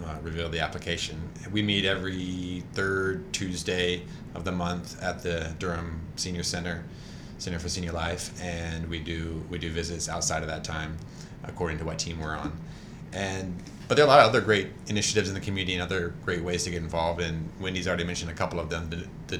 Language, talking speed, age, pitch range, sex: English, 205 wpm, 30-49, 80-90 Hz, male